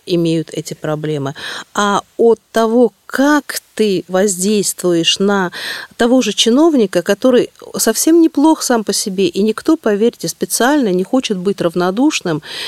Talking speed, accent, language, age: 130 wpm, native, Russian, 50-69